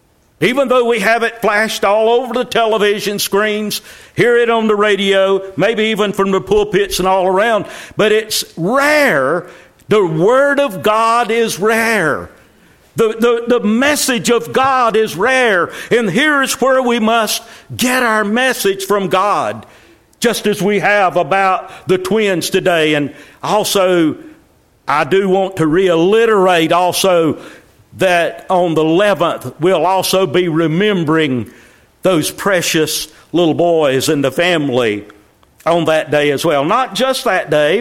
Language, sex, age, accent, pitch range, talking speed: English, male, 60-79, American, 165-225 Hz, 145 wpm